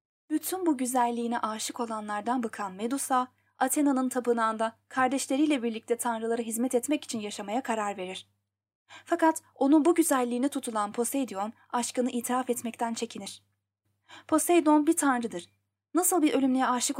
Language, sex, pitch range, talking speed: Turkish, female, 210-270 Hz, 125 wpm